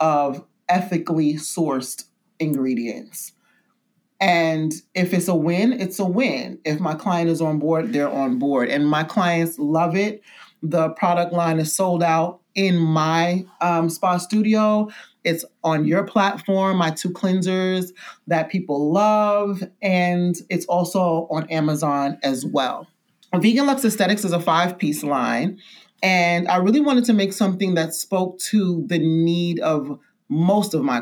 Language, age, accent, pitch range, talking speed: English, 30-49, American, 155-200 Hz, 150 wpm